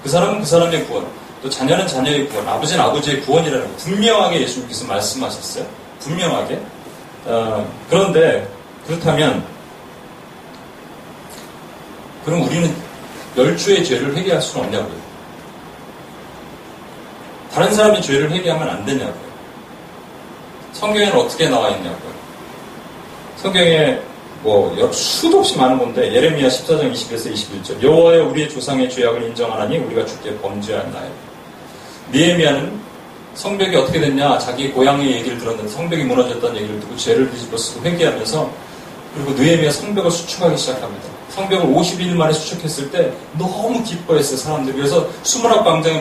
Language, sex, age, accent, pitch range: Korean, male, 30-49, native, 150-200 Hz